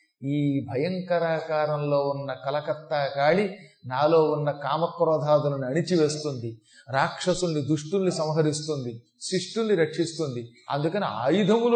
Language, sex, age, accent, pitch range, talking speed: Telugu, male, 30-49, native, 145-200 Hz, 80 wpm